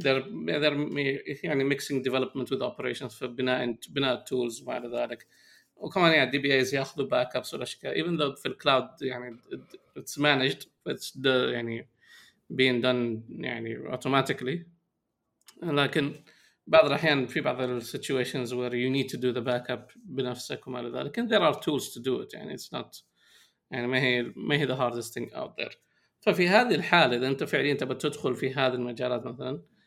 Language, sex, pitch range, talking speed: Arabic, male, 125-145 Hz, 140 wpm